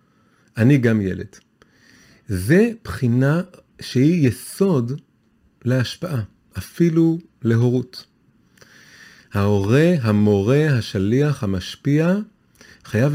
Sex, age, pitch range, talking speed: male, 40-59, 115-160 Hz, 70 wpm